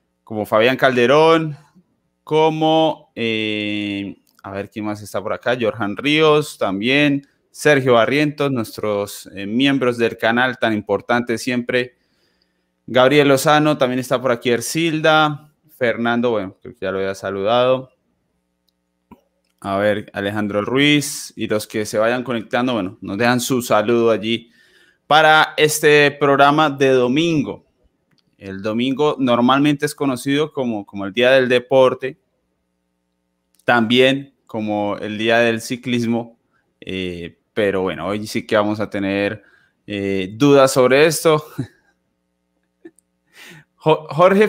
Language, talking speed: Spanish, 125 wpm